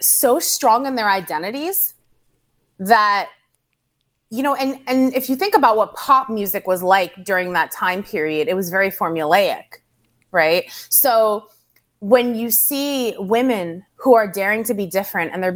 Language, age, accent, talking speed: English, 20-39, American, 160 wpm